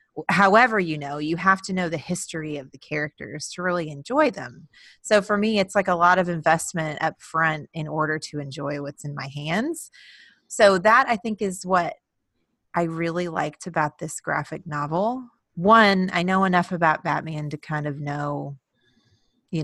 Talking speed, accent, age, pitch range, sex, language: 180 wpm, American, 30-49, 155-205 Hz, female, English